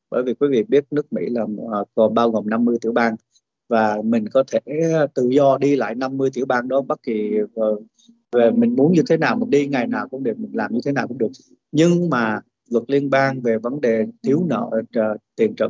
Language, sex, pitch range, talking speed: Vietnamese, male, 110-140 Hz, 240 wpm